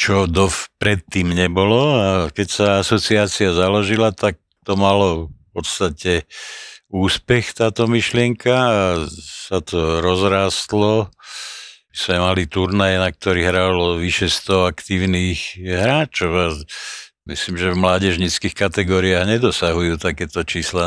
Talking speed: 120 wpm